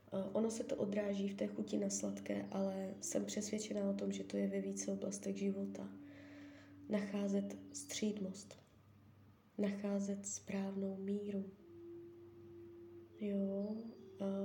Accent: native